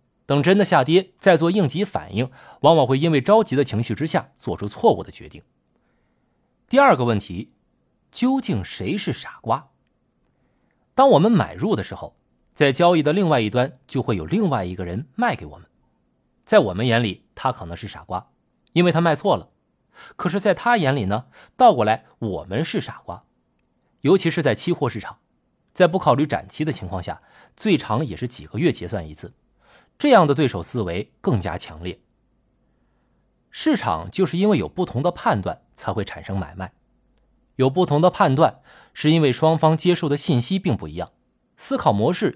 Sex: male